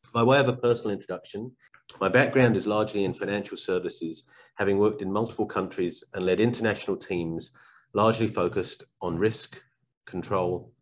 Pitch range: 95-125 Hz